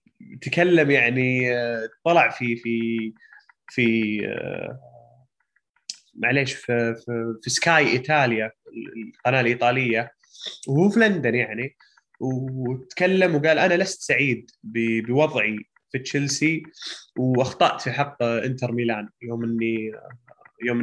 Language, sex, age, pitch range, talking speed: Arabic, male, 20-39, 120-145 Hz, 95 wpm